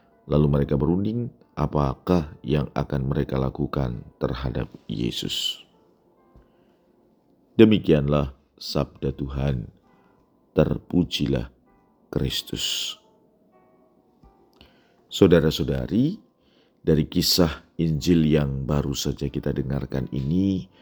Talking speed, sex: 70 wpm, male